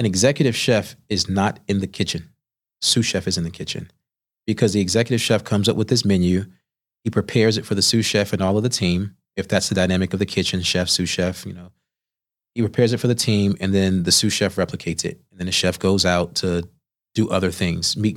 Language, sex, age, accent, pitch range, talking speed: English, male, 30-49, American, 95-110 Hz, 235 wpm